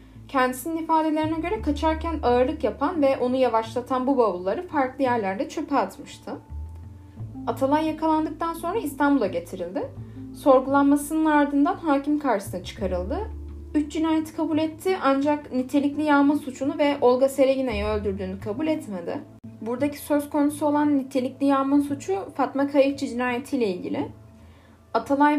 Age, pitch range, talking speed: 10-29, 220-295 Hz, 120 wpm